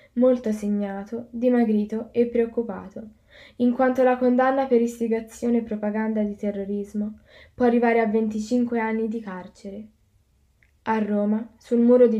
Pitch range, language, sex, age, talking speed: 210-235 Hz, Italian, female, 10-29, 135 wpm